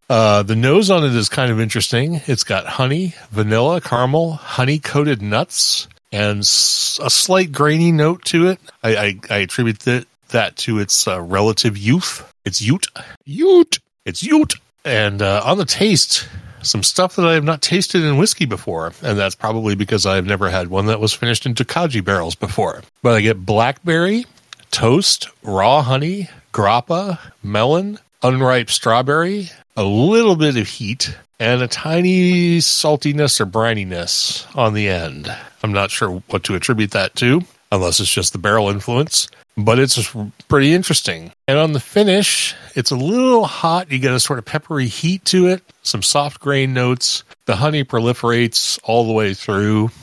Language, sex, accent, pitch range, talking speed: English, male, American, 110-160 Hz, 165 wpm